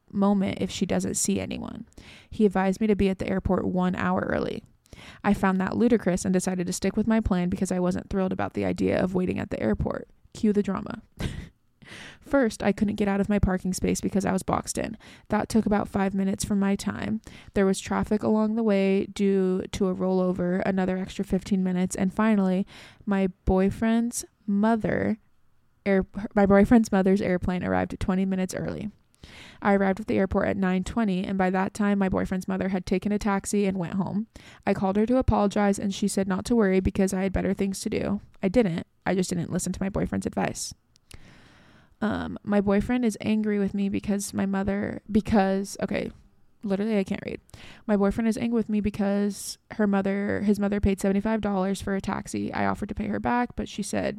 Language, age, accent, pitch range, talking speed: English, 20-39, American, 185-210 Hz, 205 wpm